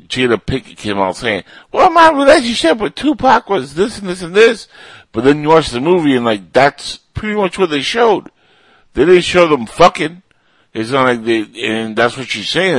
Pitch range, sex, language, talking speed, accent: 95-135 Hz, male, English, 205 wpm, American